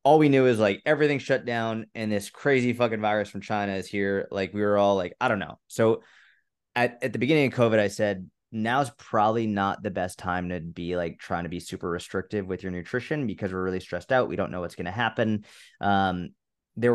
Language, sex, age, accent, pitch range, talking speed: English, male, 20-39, American, 100-115 Hz, 225 wpm